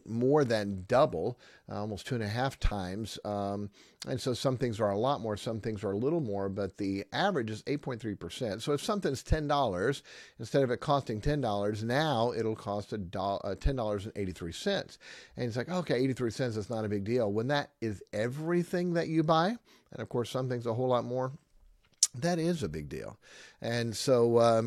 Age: 50-69